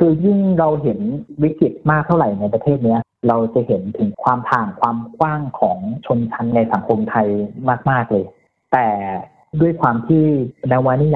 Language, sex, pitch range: Thai, male, 110-145 Hz